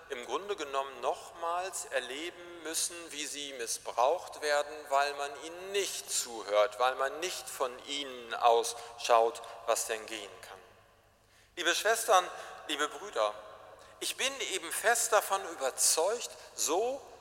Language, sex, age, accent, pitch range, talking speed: German, male, 50-69, German, 120-195 Hz, 125 wpm